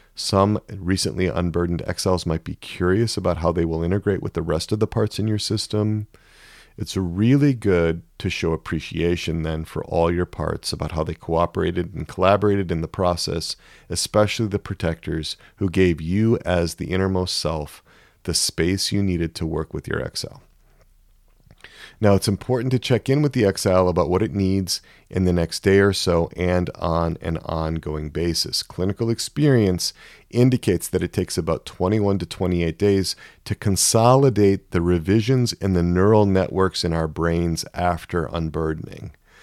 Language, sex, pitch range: English, male, 85-100 Hz